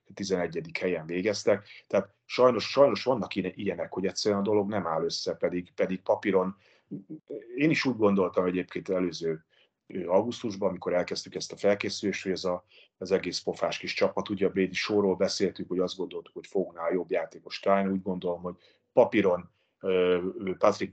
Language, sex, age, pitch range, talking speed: Hungarian, male, 30-49, 90-125 Hz, 160 wpm